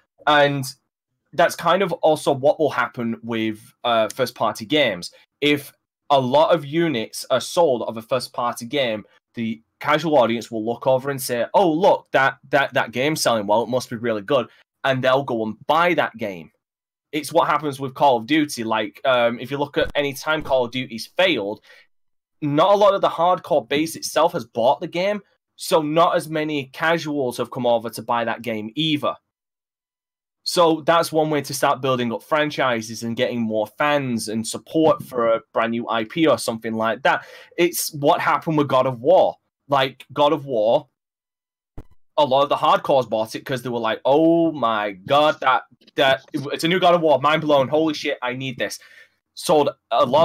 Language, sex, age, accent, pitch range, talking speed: English, male, 10-29, British, 115-155 Hz, 195 wpm